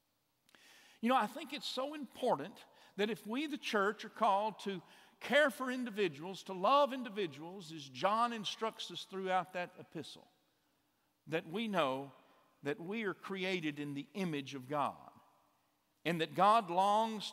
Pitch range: 165-225 Hz